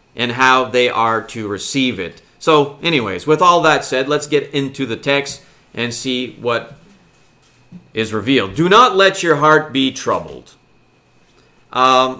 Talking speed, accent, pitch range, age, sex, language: 150 wpm, American, 135-170 Hz, 40-59, male, English